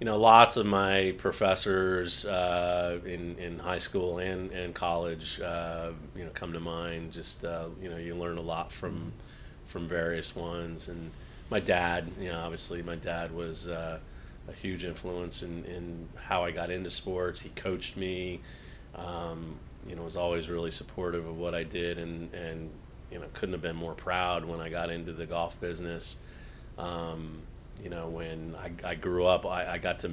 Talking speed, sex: 185 wpm, male